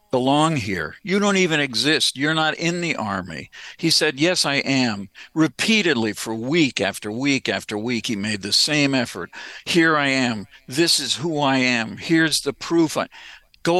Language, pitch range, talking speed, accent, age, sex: English, 115-160 Hz, 175 wpm, American, 60-79, male